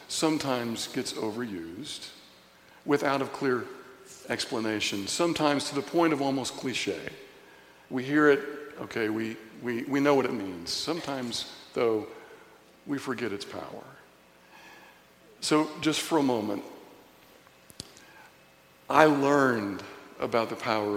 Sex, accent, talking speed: male, American, 115 wpm